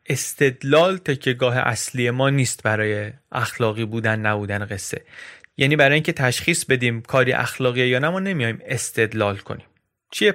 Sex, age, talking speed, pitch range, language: male, 30-49, 145 wpm, 115-155 Hz, Persian